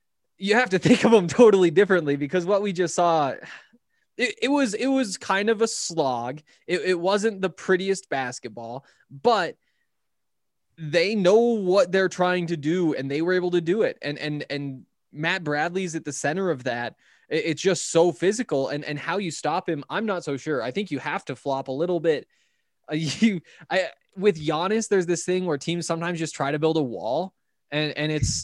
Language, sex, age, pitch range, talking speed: English, male, 20-39, 145-185 Hz, 205 wpm